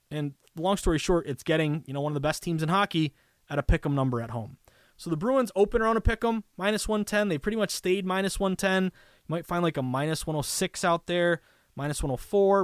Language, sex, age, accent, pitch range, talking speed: English, male, 20-39, American, 130-165 Hz, 225 wpm